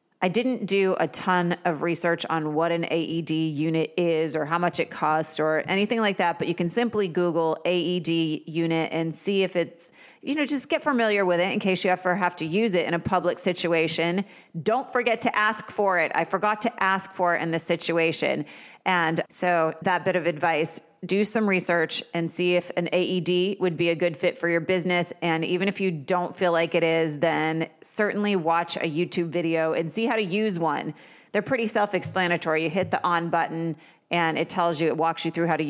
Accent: American